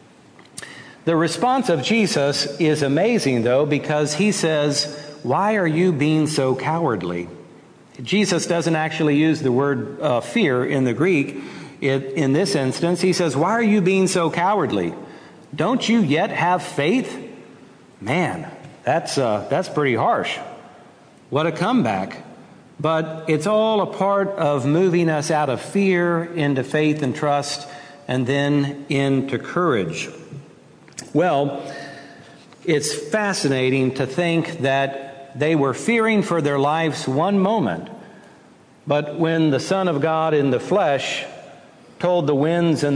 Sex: male